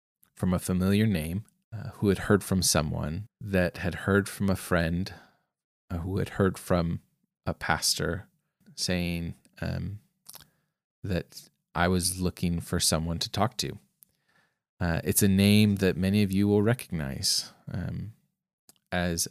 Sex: male